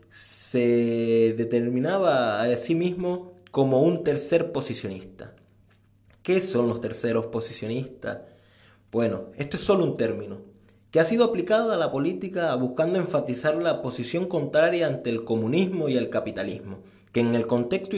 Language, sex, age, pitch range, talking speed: Spanish, male, 20-39, 115-160 Hz, 140 wpm